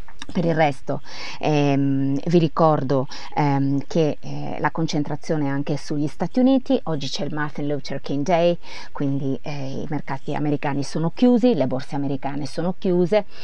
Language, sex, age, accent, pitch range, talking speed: Italian, female, 30-49, native, 145-170 Hz, 155 wpm